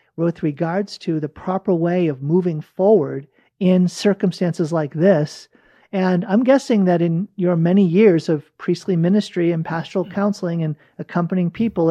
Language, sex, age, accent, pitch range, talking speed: English, male, 50-69, American, 160-200 Hz, 150 wpm